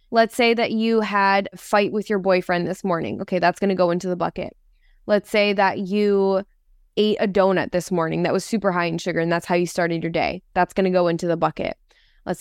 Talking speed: 240 wpm